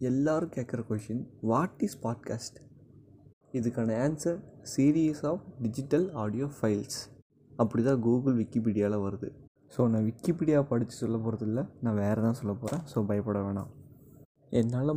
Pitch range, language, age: 110-140 Hz, Tamil, 20-39